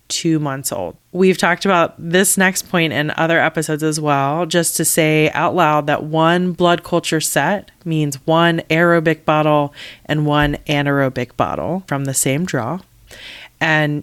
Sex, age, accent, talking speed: female, 20-39, American, 160 wpm